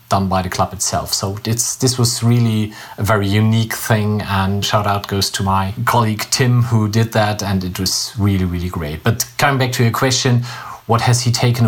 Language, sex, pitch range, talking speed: English, male, 105-125 Hz, 210 wpm